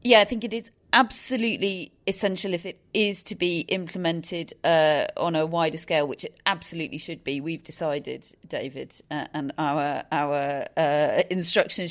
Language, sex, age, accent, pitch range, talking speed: English, female, 30-49, British, 155-195 Hz, 160 wpm